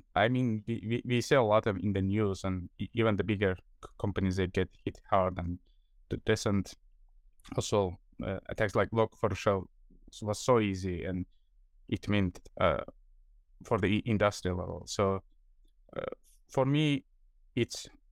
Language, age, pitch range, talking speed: English, 20-39, 90-110 Hz, 155 wpm